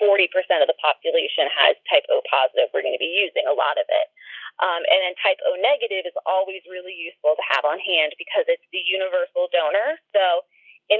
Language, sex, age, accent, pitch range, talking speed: English, female, 20-39, American, 185-305 Hz, 200 wpm